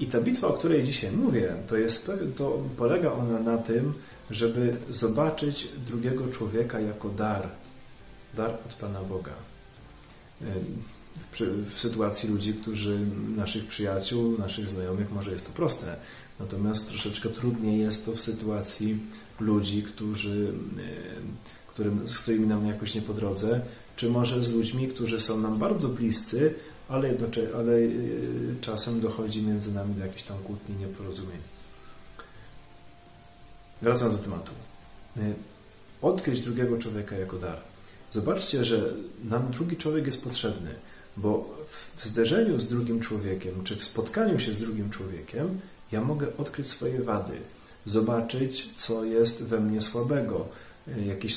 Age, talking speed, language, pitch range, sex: 30-49, 130 wpm, Polish, 105-120 Hz, male